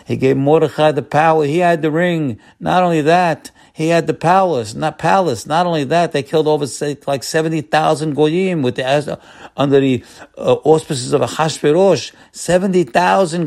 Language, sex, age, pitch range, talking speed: English, male, 50-69, 95-135 Hz, 170 wpm